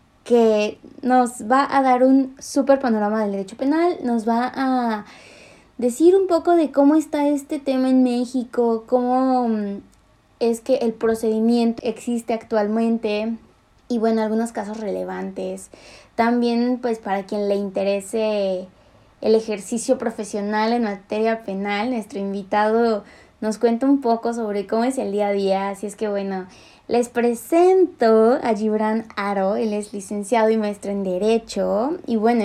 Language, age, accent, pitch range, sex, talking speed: English, 20-39, Mexican, 205-245 Hz, female, 145 wpm